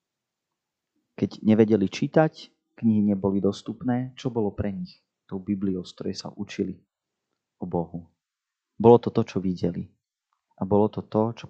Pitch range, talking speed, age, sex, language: 95-115 Hz, 140 wpm, 30-49, male, Slovak